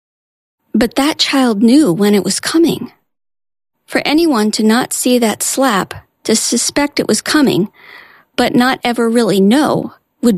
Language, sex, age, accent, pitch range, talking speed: English, female, 40-59, American, 210-275 Hz, 150 wpm